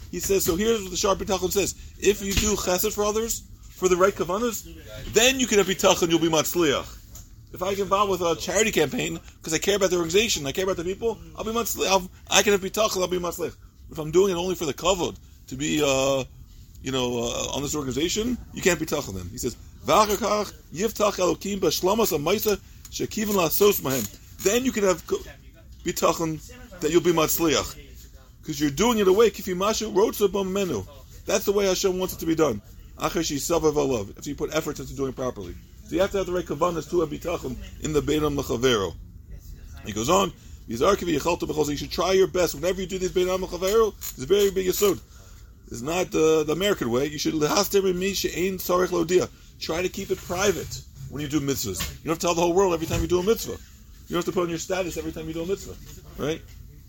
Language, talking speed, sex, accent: English, 195 wpm, male, American